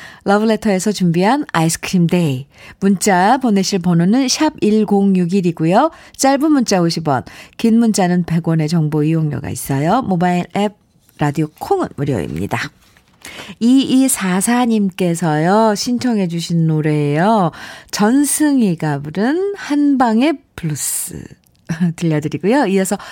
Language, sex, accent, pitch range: Korean, female, native, 165-240 Hz